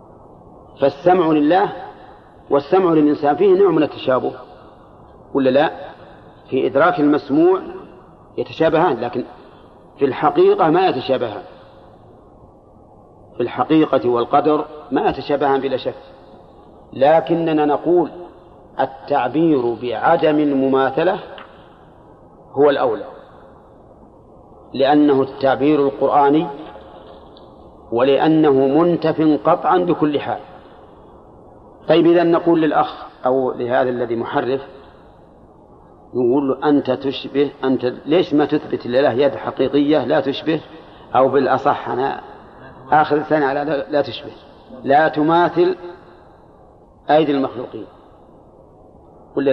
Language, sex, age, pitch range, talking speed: Arabic, male, 40-59, 130-160 Hz, 90 wpm